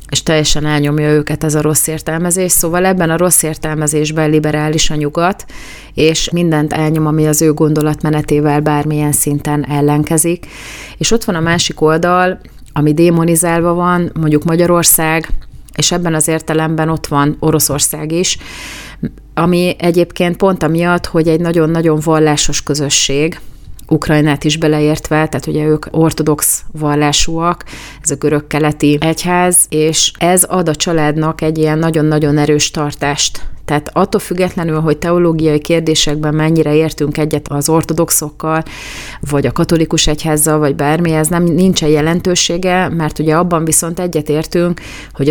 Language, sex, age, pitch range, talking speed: Hungarian, female, 30-49, 150-165 Hz, 135 wpm